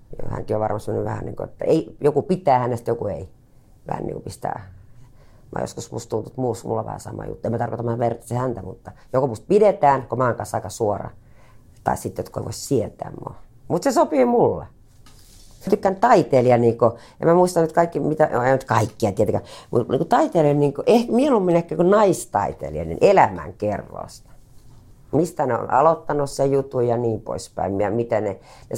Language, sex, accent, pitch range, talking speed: Finnish, female, native, 115-155 Hz, 185 wpm